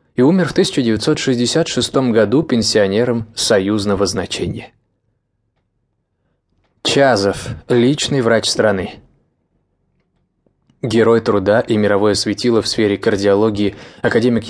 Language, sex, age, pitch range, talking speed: English, male, 20-39, 105-125 Hz, 85 wpm